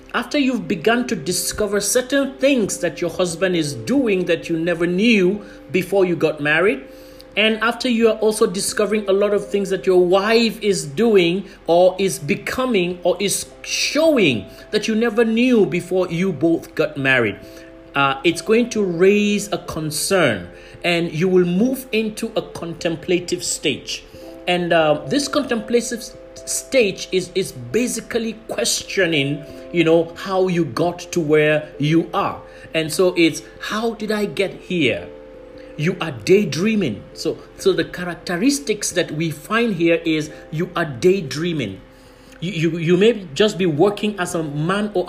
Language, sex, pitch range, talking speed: English, male, 165-210 Hz, 155 wpm